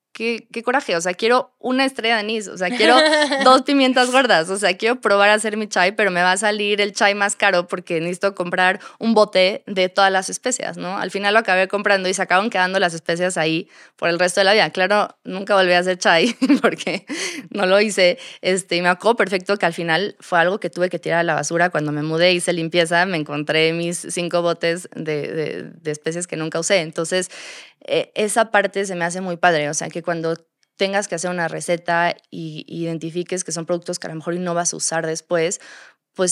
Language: Spanish